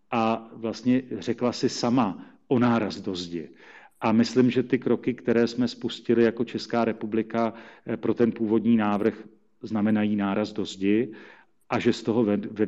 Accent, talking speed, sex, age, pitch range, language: native, 155 wpm, male, 40-59, 110-125 Hz, Czech